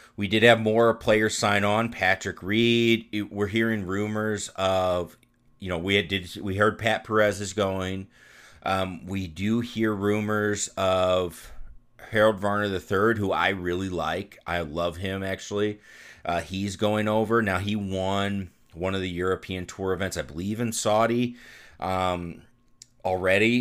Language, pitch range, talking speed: English, 90-110 Hz, 160 wpm